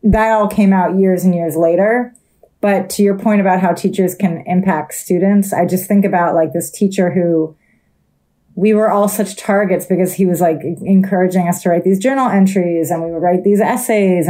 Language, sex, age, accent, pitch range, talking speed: English, female, 30-49, American, 175-210 Hz, 200 wpm